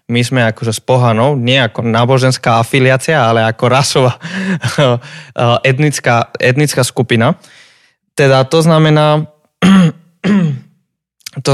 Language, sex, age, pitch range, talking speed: Slovak, male, 20-39, 120-145 Hz, 100 wpm